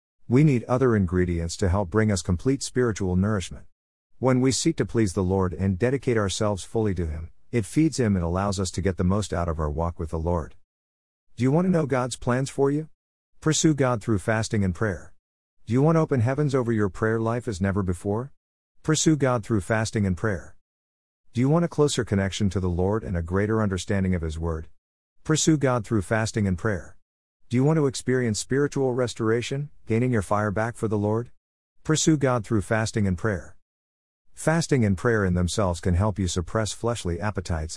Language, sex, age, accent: English, male, 50-69, American